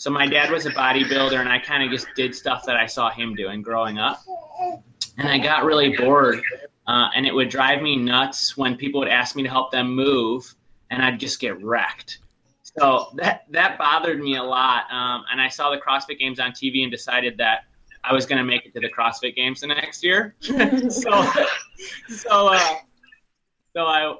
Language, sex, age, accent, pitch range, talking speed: English, male, 20-39, American, 120-145 Hz, 205 wpm